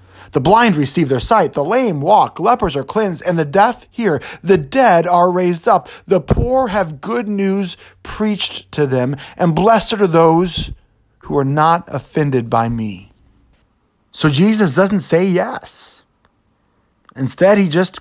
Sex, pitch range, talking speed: male, 115-165 Hz, 155 wpm